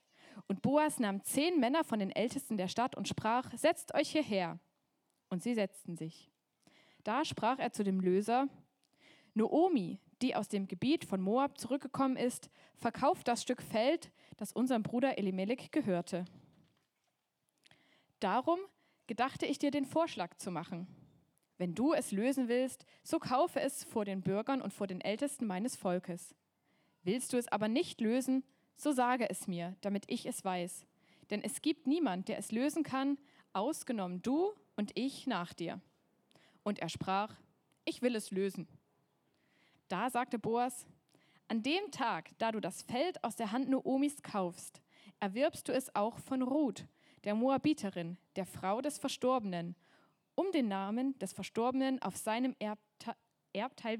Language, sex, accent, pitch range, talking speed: German, female, German, 190-265 Hz, 155 wpm